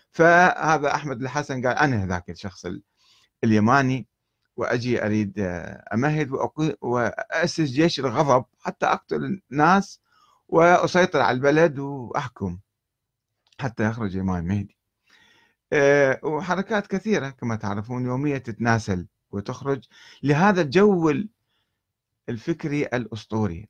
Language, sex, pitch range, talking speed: Arabic, male, 105-145 Hz, 95 wpm